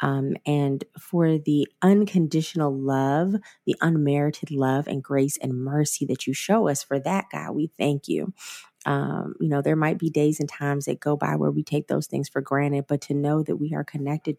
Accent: American